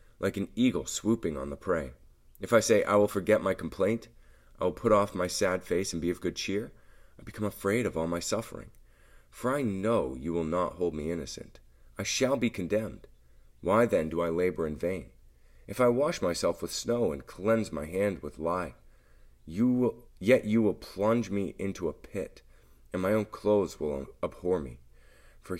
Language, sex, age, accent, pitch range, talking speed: English, male, 30-49, American, 75-110 Hz, 190 wpm